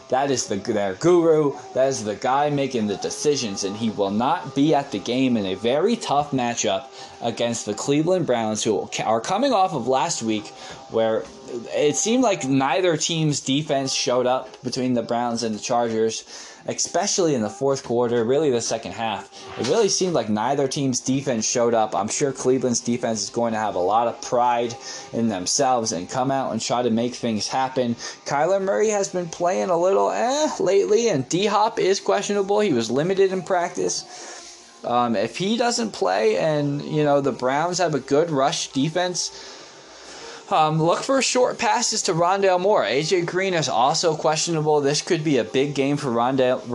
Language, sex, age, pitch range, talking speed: English, male, 10-29, 120-175 Hz, 185 wpm